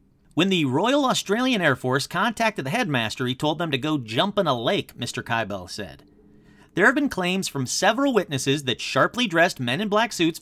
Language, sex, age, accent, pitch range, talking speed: English, male, 40-59, American, 125-205 Hz, 200 wpm